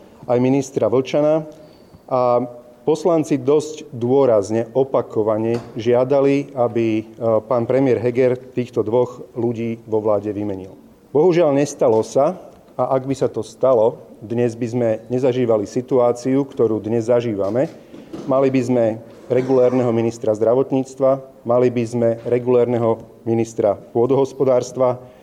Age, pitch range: 40-59, 115-130 Hz